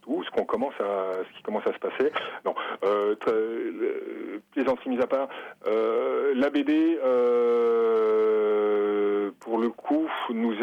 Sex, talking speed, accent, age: male, 135 wpm, French, 40-59